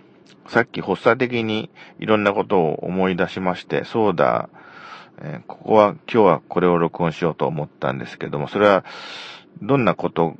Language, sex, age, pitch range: Japanese, male, 40-59, 85-105 Hz